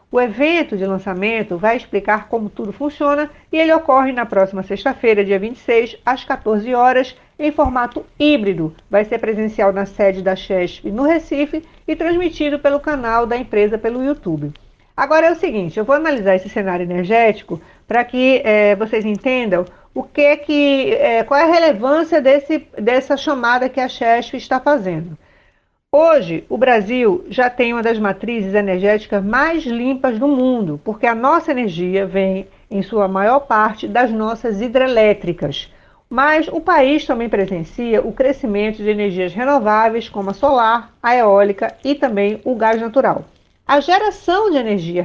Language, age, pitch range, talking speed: Portuguese, 50-69, 205-285 Hz, 150 wpm